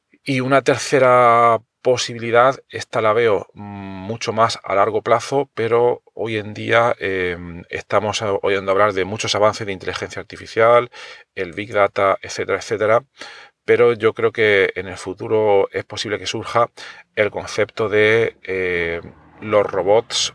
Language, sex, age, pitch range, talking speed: Spanish, male, 40-59, 100-125 Hz, 140 wpm